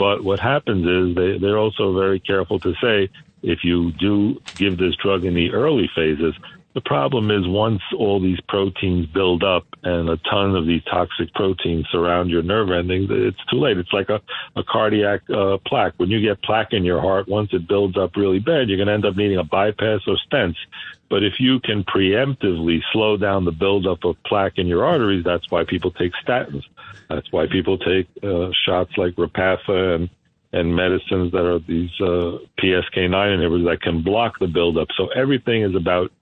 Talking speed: 195 wpm